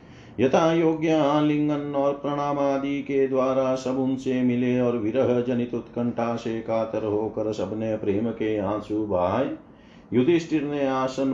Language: Hindi